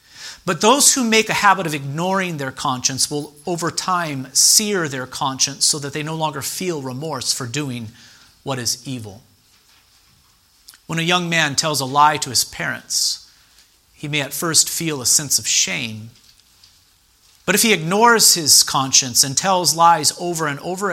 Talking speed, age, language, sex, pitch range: 170 wpm, 40-59, English, male, 120-165 Hz